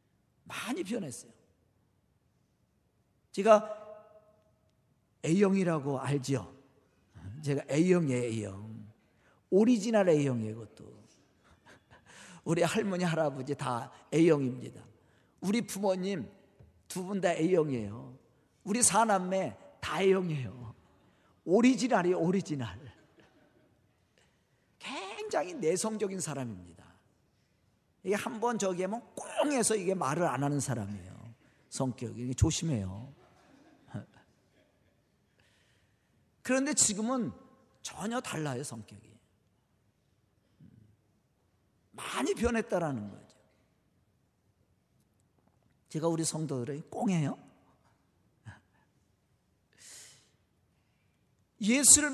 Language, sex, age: Korean, male, 50-69